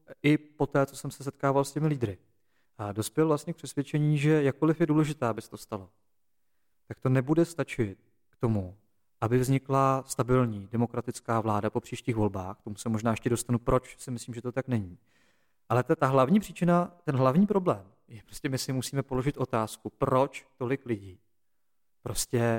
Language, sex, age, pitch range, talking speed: Czech, male, 40-59, 115-155 Hz, 185 wpm